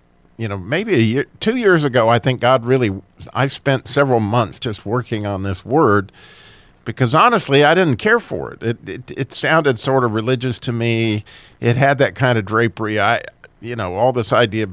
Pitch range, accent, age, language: 110-140 Hz, American, 50-69, English